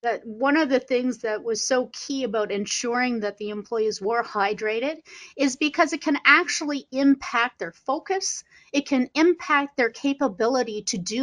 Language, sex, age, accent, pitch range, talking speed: English, female, 30-49, American, 225-280 Hz, 165 wpm